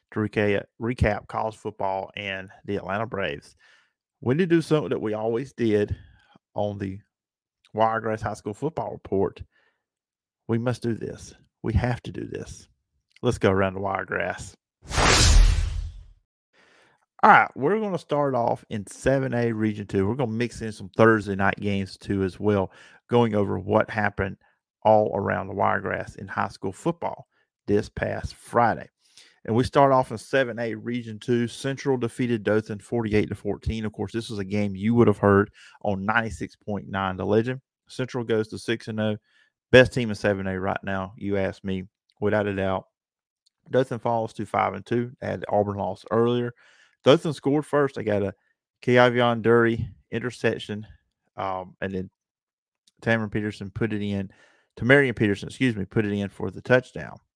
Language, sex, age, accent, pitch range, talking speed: English, male, 40-59, American, 100-120 Hz, 160 wpm